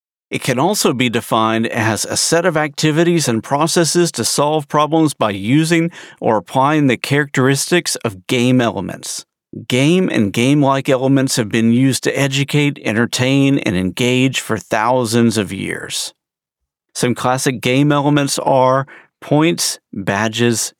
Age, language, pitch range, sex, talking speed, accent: 50-69, English, 115-145 Hz, male, 135 wpm, American